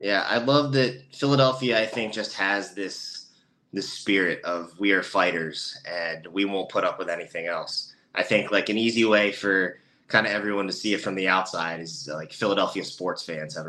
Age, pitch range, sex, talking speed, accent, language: 20-39, 90-115 Hz, male, 205 wpm, American, English